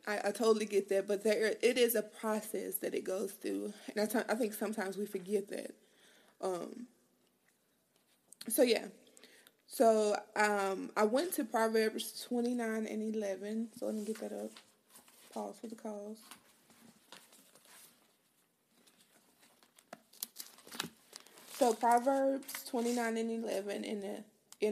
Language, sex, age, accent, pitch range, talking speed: English, female, 20-39, American, 195-230 Hz, 120 wpm